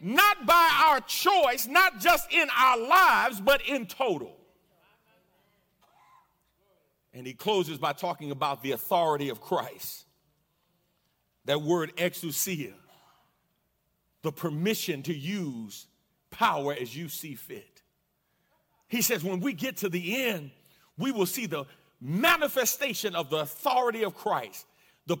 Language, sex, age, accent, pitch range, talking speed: English, male, 40-59, American, 180-295 Hz, 125 wpm